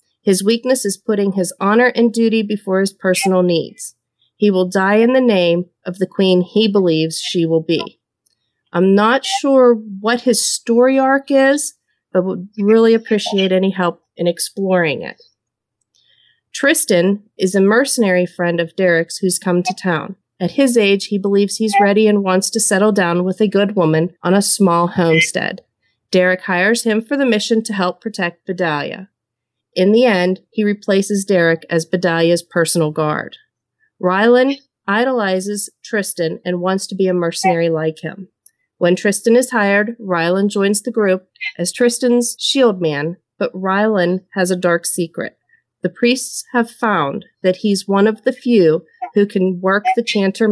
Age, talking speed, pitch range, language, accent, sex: 40-59, 165 wpm, 180-225 Hz, English, American, female